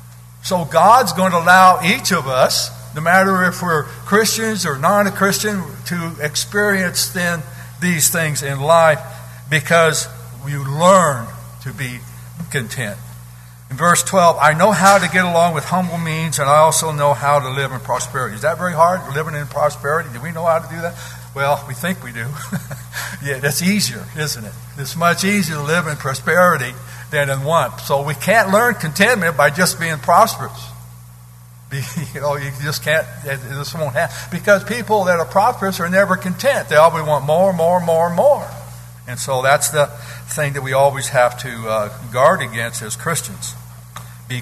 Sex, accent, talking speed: male, American, 180 wpm